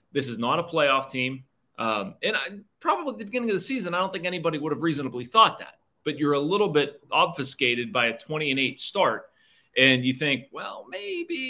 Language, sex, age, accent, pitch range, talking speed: English, male, 30-49, American, 135-195 Hz, 220 wpm